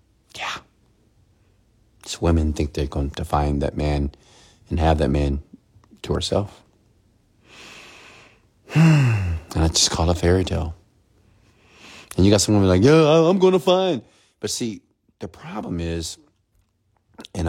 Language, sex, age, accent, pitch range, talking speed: English, male, 40-59, American, 80-110 Hz, 135 wpm